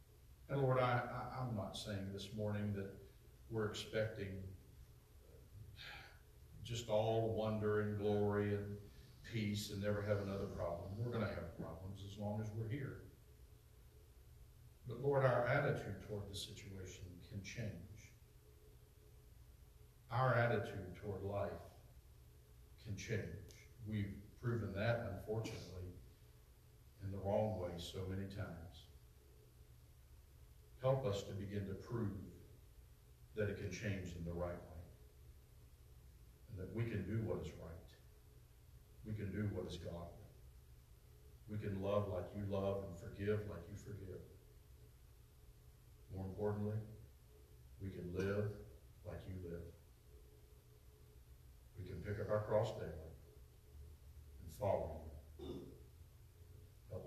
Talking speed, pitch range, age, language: 120 wpm, 85-105 Hz, 50-69, English